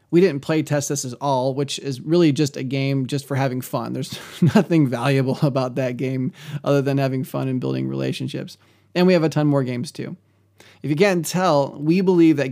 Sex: male